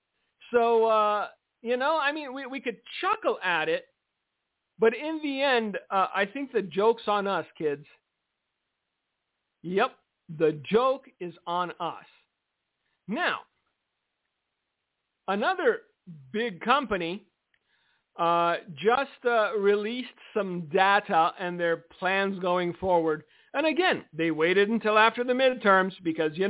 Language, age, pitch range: English, 50-69, 185-255 Hz